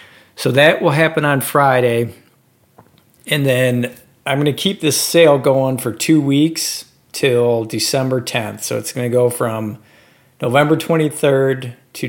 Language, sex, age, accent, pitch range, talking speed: English, male, 40-59, American, 115-135 Hz, 150 wpm